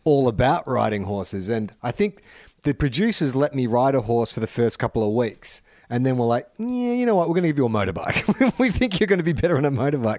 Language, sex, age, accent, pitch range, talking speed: English, male, 30-49, Australian, 105-140 Hz, 255 wpm